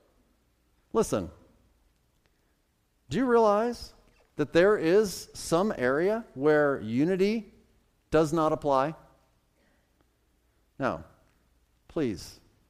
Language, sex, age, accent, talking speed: English, male, 40-59, American, 75 wpm